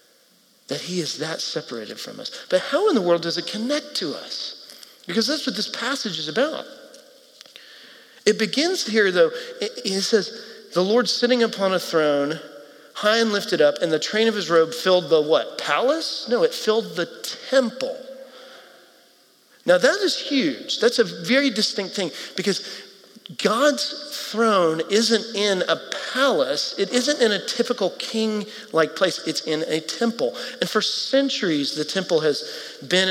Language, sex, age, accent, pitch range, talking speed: English, male, 40-59, American, 165-255 Hz, 165 wpm